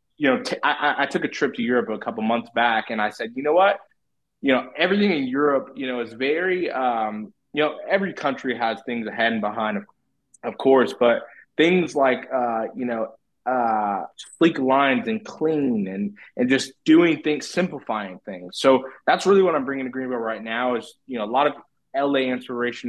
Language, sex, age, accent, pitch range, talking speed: English, male, 20-39, American, 115-140 Hz, 205 wpm